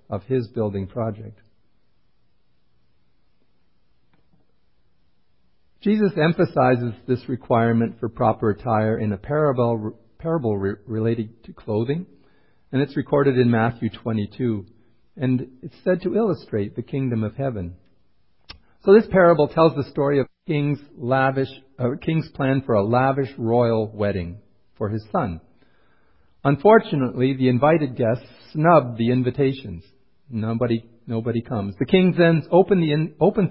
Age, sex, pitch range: 50-69, male, 110-150 Hz